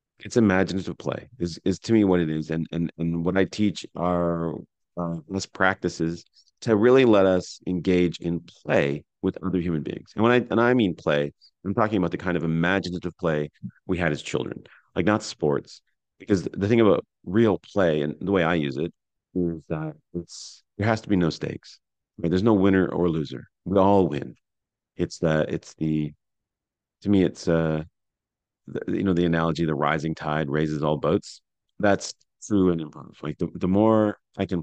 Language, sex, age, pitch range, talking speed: English, male, 40-59, 80-100 Hz, 190 wpm